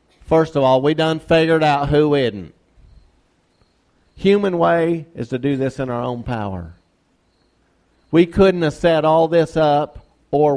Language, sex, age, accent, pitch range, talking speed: English, male, 50-69, American, 150-205 Hz, 155 wpm